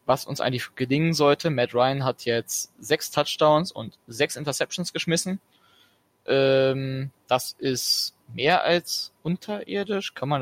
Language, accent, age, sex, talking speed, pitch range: German, German, 20-39, male, 130 wpm, 125-150 Hz